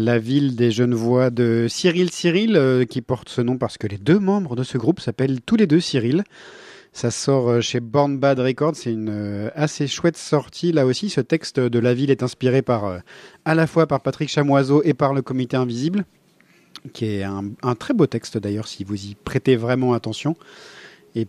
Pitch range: 115-145 Hz